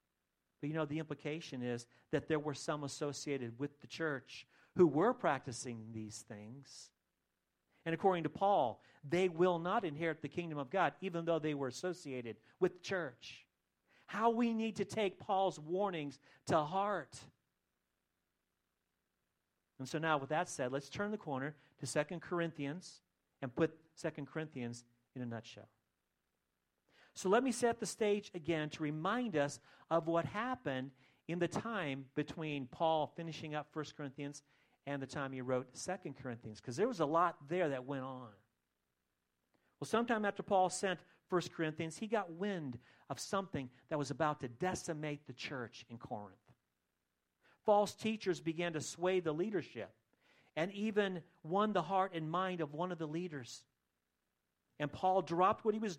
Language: English